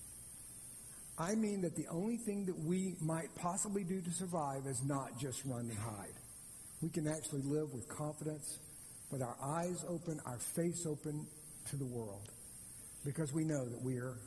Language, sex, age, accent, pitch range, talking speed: English, male, 60-79, American, 130-160 Hz, 170 wpm